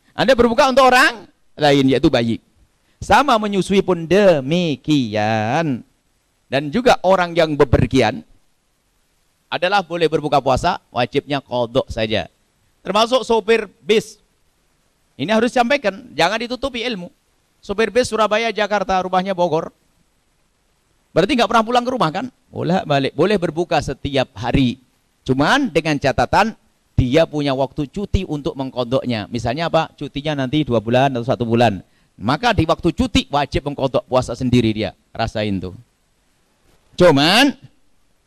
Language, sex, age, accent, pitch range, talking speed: Indonesian, male, 50-69, native, 130-215 Hz, 125 wpm